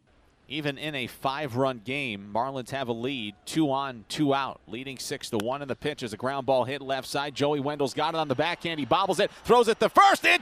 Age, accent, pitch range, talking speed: 40-59, American, 105-165 Hz, 240 wpm